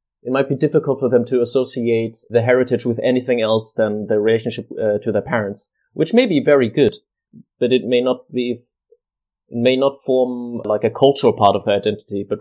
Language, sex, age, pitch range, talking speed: English, male, 30-49, 110-130 Hz, 205 wpm